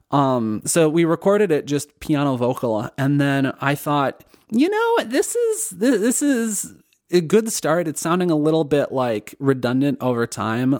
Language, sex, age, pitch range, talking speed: English, male, 30-49, 135-180 Hz, 170 wpm